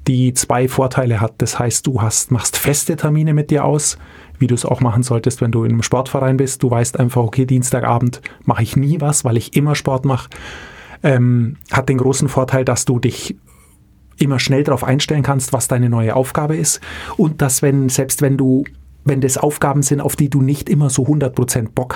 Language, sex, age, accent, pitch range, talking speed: German, male, 30-49, German, 125-145 Hz, 210 wpm